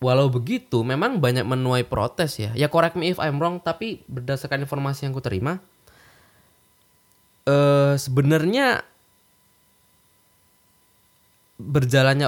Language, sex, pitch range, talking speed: Indonesian, male, 105-145 Hz, 110 wpm